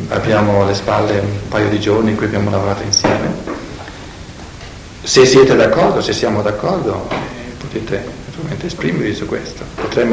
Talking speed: 135 wpm